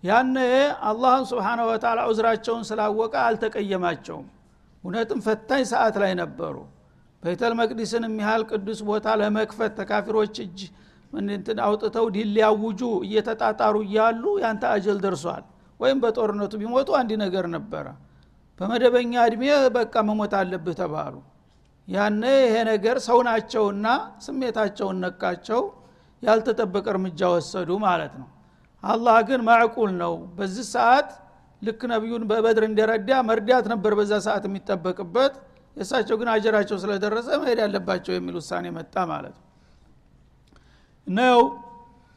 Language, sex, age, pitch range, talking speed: Amharic, male, 60-79, 200-235 Hz, 95 wpm